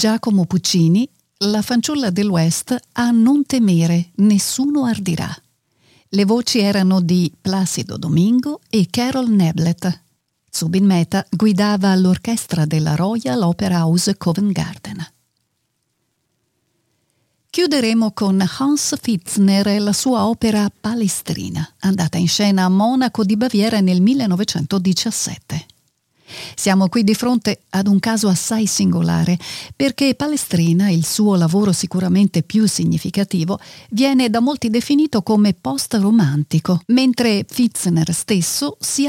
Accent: native